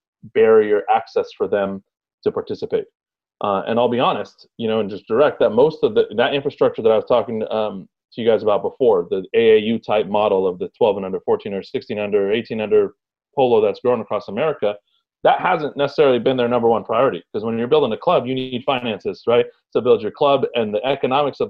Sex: male